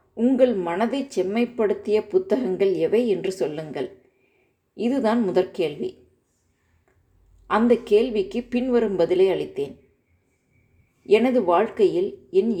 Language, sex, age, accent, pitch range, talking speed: Tamil, female, 30-49, native, 165-240 Hz, 80 wpm